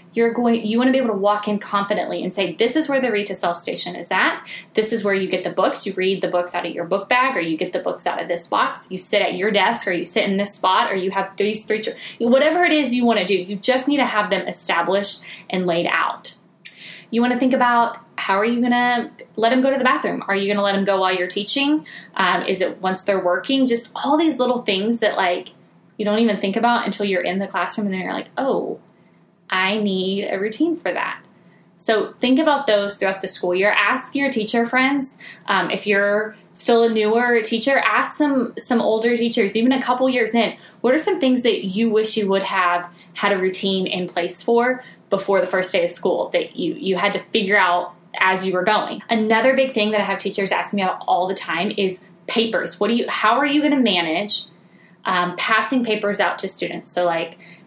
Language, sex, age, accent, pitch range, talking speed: English, female, 10-29, American, 190-240 Hz, 245 wpm